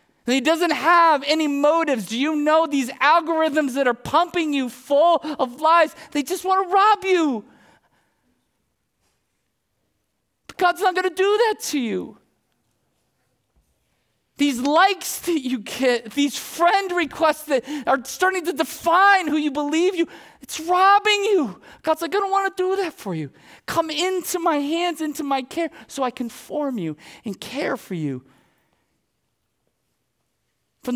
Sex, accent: male, American